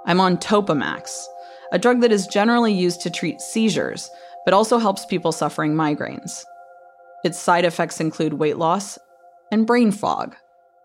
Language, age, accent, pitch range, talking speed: English, 30-49, American, 170-225 Hz, 150 wpm